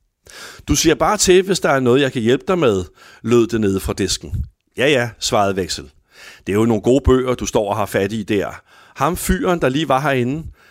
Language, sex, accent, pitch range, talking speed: Danish, male, native, 95-130 Hz, 230 wpm